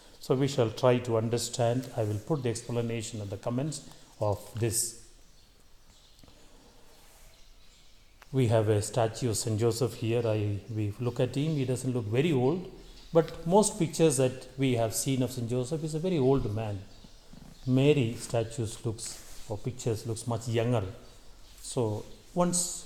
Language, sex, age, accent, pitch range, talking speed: English, male, 30-49, Indian, 110-135 Hz, 155 wpm